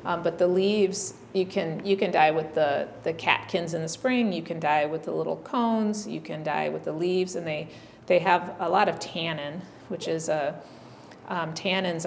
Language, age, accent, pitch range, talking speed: English, 30-49, American, 155-185 Hz, 210 wpm